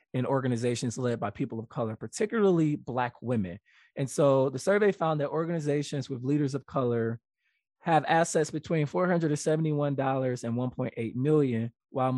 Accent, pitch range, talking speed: American, 125-145 Hz, 145 wpm